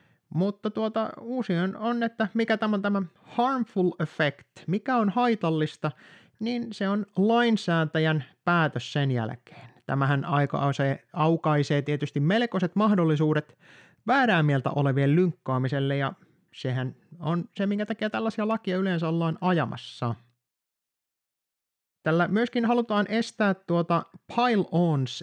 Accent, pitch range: native, 130-185 Hz